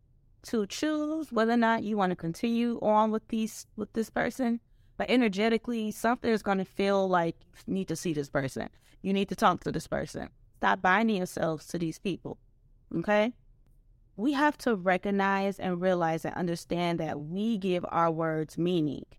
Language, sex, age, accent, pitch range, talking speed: English, female, 20-39, American, 160-215 Hz, 180 wpm